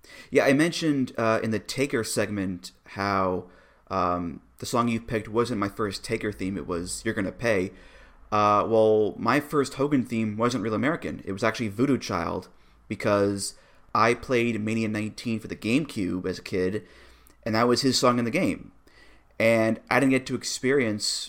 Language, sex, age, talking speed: English, male, 30-49, 180 wpm